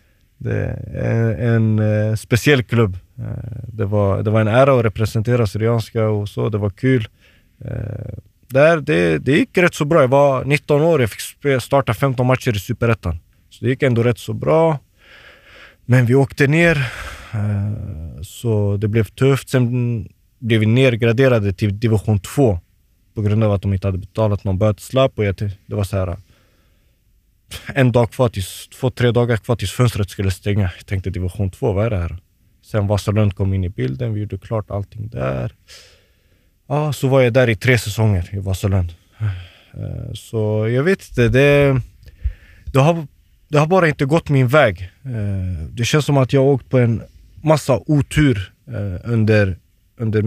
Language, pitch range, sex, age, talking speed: Swedish, 100-125 Hz, male, 20-39, 170 wpm